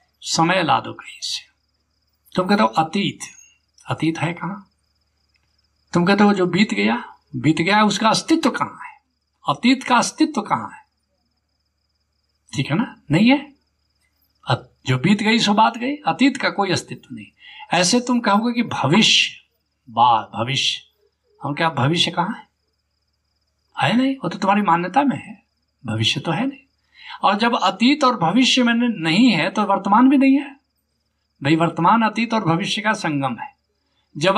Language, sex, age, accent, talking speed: Hindi, male, 60-79, native, 160 wpm